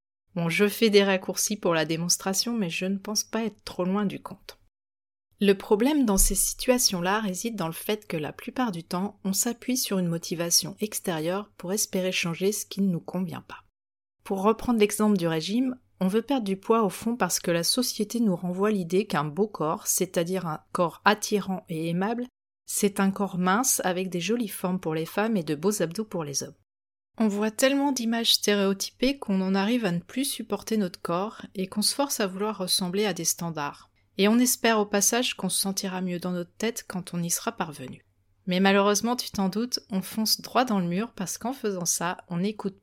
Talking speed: 210 wpm